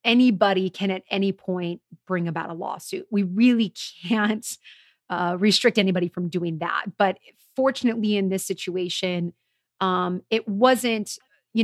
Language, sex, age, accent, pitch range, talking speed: English, female, 30-49, American, 180-210 Hz, 140 wpm